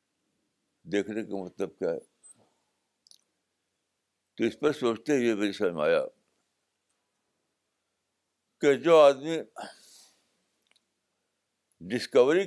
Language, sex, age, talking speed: Urdu, male, 60-79, 80 wpm